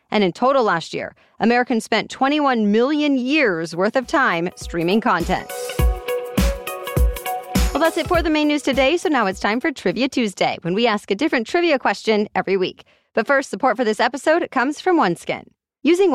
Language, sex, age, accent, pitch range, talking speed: English, female, 30-49, American, 205-265 Hz, 180 wpm